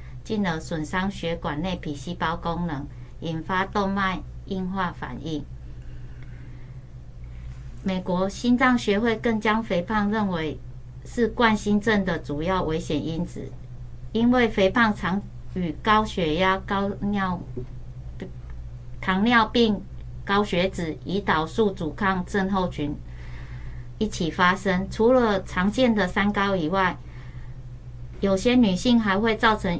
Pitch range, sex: 145-205 Hz, female